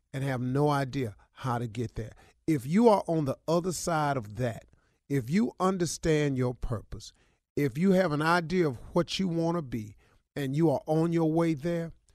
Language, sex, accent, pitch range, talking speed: English, male, American, 130-195 Hz, 195 wpm